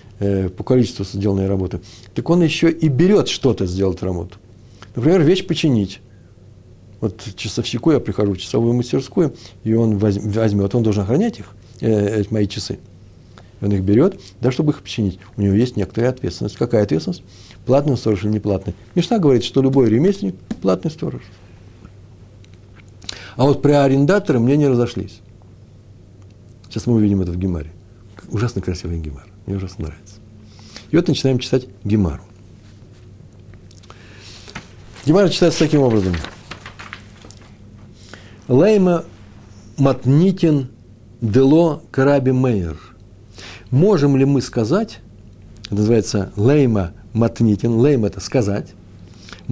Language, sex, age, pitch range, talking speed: Russian, male, 60-79, 100-125 Hz, 125 wpm